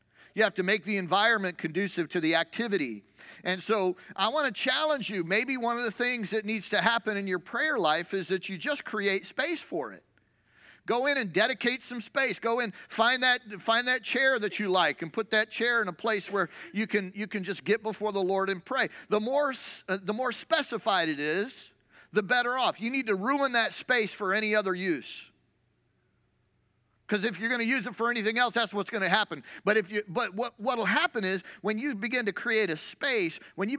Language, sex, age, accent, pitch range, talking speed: English, male, 40-59, American, 185-245 Hz, 220 wpm